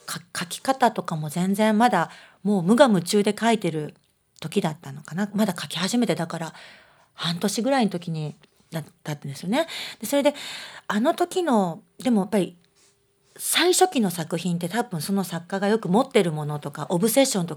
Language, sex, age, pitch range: Japanese, female, 40-59, 165-225 Hz